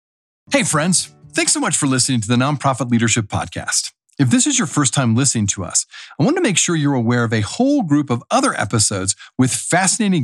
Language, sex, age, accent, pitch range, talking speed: English, male, 40-59, American, 115-170 Hz, 215 wpm